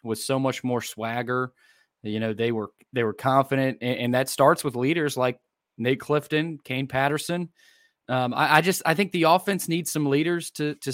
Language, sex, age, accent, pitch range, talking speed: English, male, 20-39, American, 115-145 Hz, 195 wpm